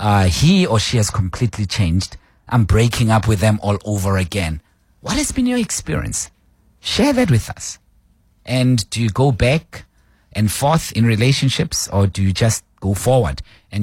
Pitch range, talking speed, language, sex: 95-125 Hz, 175 wpm, English, male